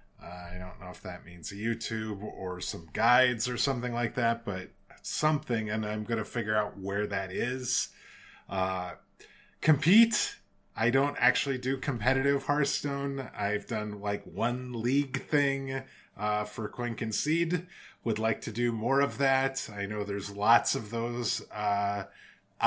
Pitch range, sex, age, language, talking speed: 105-135 Hz, male, 30-49, English, 150 wpm